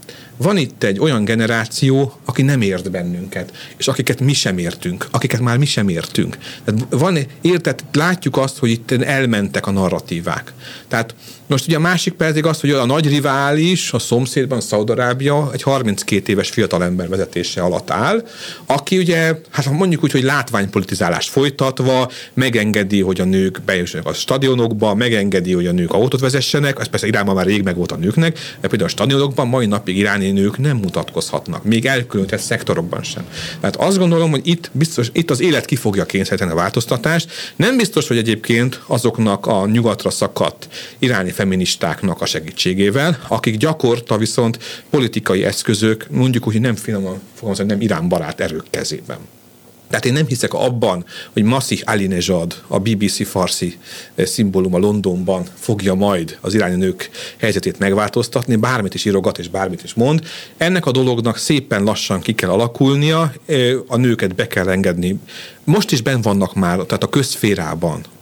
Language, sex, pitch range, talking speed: Hungarian, male, 100-140 Hz, 160 wpm